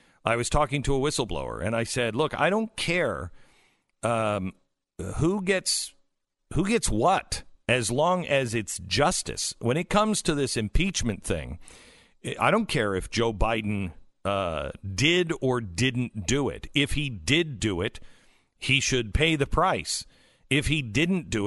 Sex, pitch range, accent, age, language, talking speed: male, 115-170 Hz, American, 50-69, English, 160 wpm